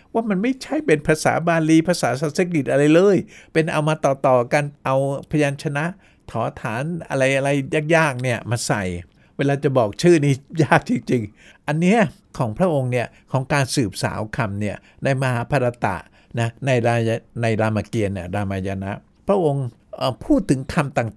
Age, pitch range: 60-79, 115-155 Hz